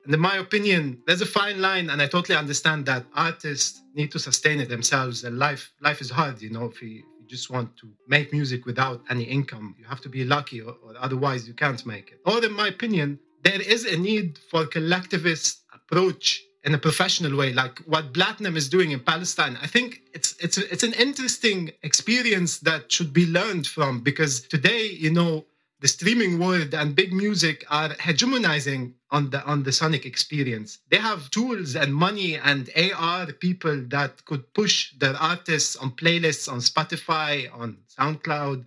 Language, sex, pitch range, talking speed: English, male, 140-180 Hz, 190 wpm